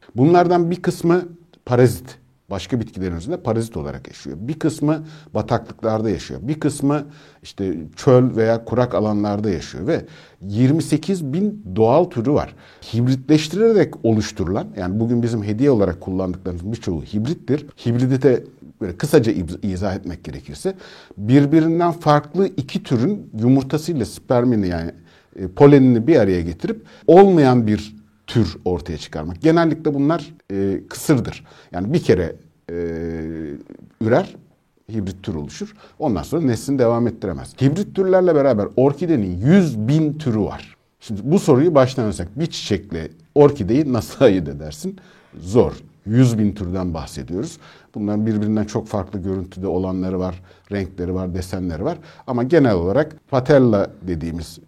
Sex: male